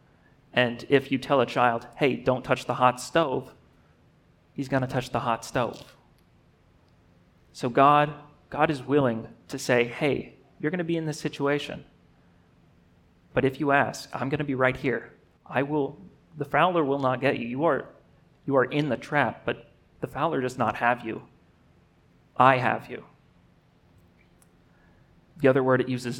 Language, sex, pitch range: English, male, 115-135 Hz